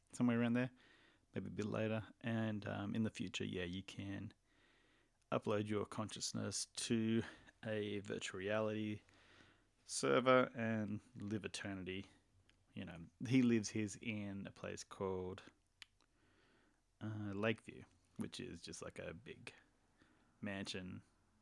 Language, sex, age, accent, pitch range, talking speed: English, male, 20-39, Australian, 95-110 Hz, 125 wpm